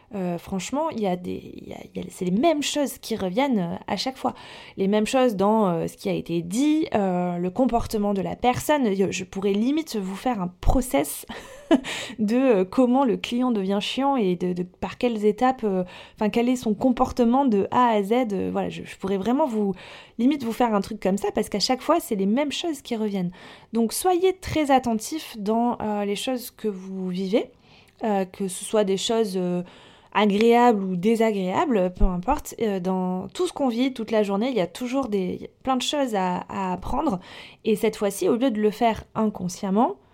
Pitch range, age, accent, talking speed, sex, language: 195-250 Hz, 20-39, French, 210 wpm, female, French